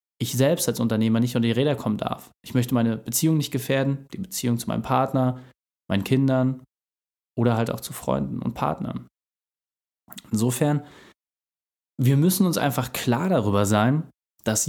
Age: 20-39